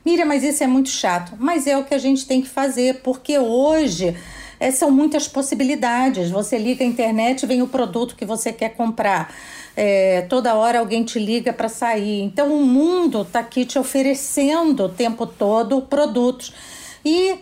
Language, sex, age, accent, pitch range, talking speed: Portuguese, female, 50-69, Brazilian, 235-290 Hz, 180 wpm